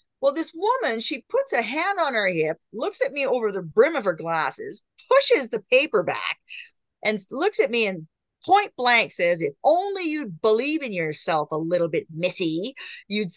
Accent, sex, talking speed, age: American, female, 190 wpm, 40-59